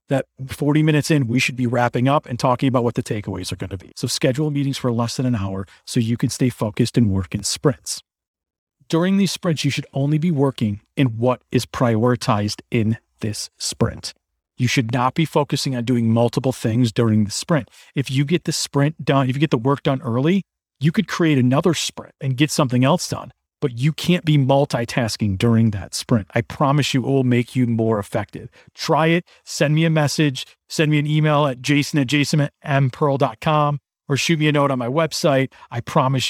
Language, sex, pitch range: English, male, 120-150 Hz